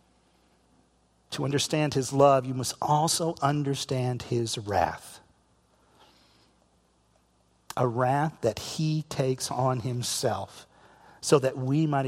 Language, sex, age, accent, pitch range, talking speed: English, male, 50-69, American, 115-155 Hz, 105 wpm